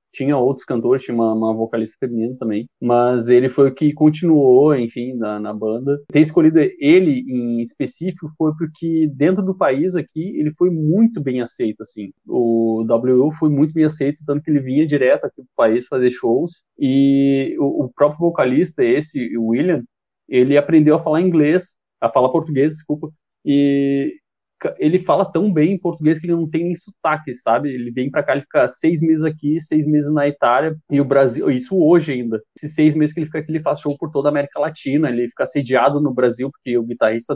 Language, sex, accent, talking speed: Portuguese, male, Brazilian, 200 wpm